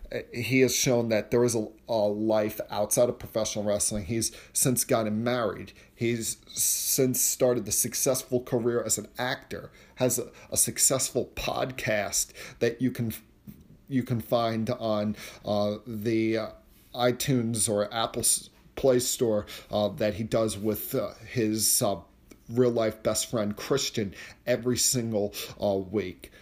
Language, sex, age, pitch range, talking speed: English, male, 40-59, 110-130 Hz, 145 wpm